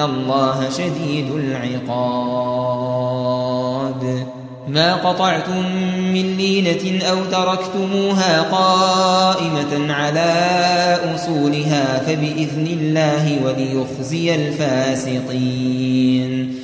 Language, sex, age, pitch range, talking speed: Arabic, male, 20-39, 145-190 Hz, 60 wpm